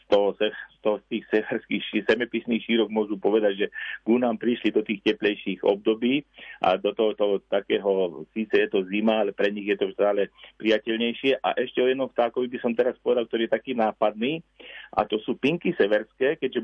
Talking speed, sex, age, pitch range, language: 180 wpm, male, 40-59, 110-145 Hz, Slovak